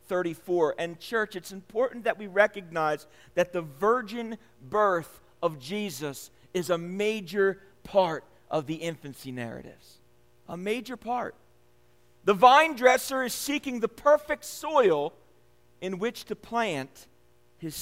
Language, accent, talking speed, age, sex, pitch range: English, American, 130 wpm, 40-59, male, 150-230 Hz